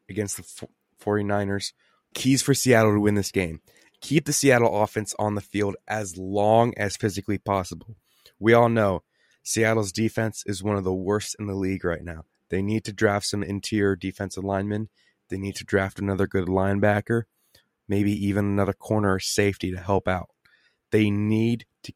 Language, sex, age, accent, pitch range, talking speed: English, male, 20-39, American, 95-110 Hz, 170 wpm